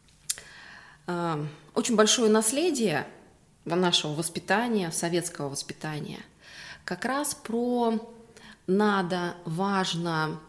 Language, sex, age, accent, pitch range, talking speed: Russian, female, 20-39, native, 165-215 Hz, 70 wpm